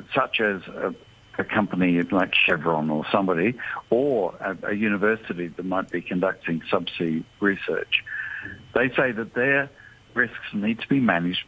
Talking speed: 145 wpm